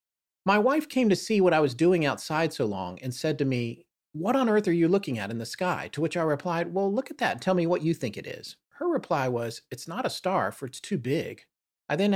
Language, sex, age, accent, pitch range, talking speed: English, male, 40-59, American, 125-180 Hz, 265 wpm